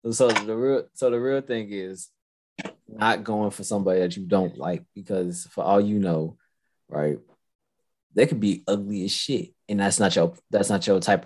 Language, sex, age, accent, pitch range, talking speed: English, male, 20-39, American, 95-140 Hz, 190 wpm